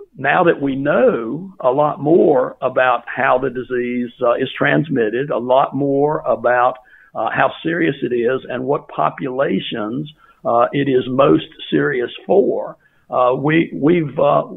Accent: American